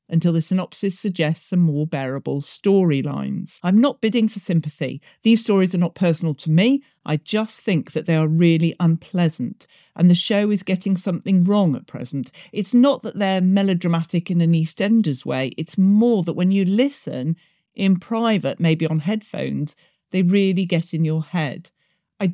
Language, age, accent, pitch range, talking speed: English, 40-59, British, 160-205 Hz, 170 wpm